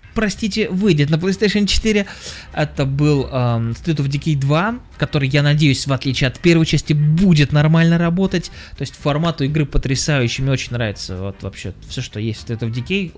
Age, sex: 20-39, male